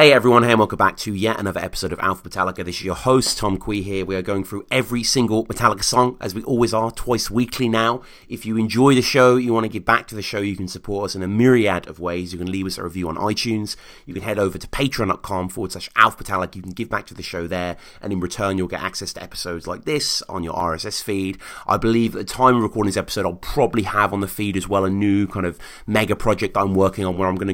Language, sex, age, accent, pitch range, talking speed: English, male, 30-49, British, 100-125 Hz, 270 wpm